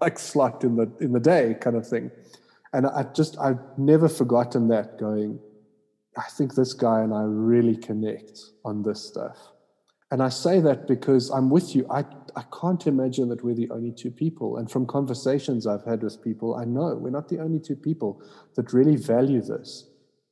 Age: 30-49